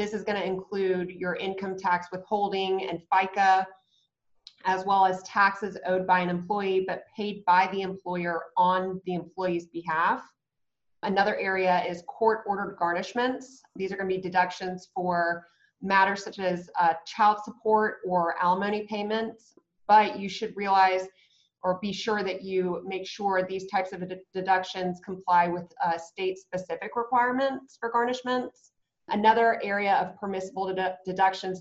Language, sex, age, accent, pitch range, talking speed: English, female, 30-49, American, 180-210 Hz, 140 wpm